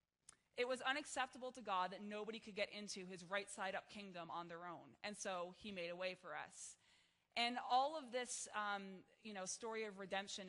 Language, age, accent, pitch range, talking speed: English, 20-39, American, 185-230 Hz, 195 wpm